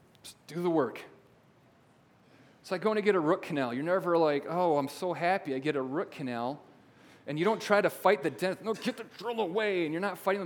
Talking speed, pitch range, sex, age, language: 235 wpm, 125-165 Hz, male, 40-59, English